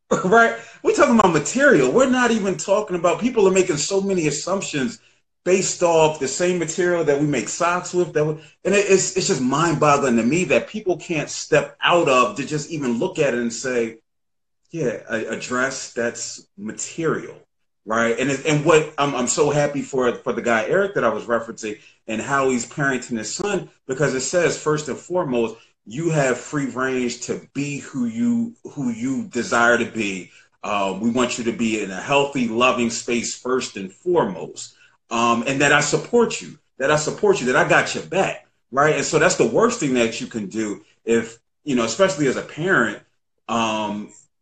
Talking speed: 200 wpm